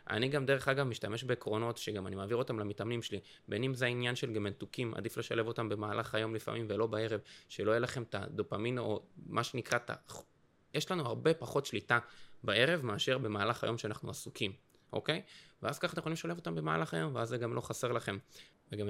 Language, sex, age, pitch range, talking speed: Hebrew, male, 20-39, 105-125 Hz, 195 wpm